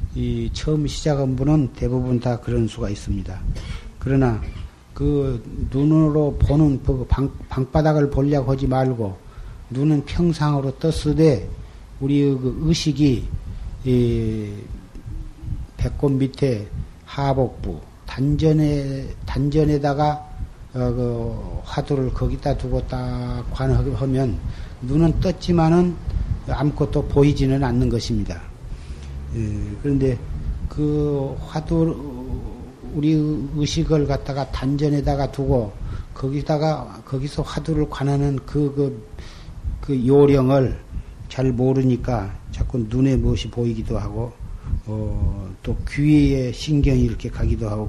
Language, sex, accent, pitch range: Korean, male, native, 105-140 Hz